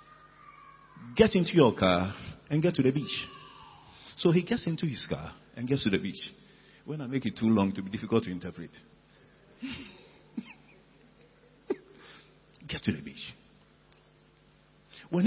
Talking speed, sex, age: 140 wpm, male, 50-69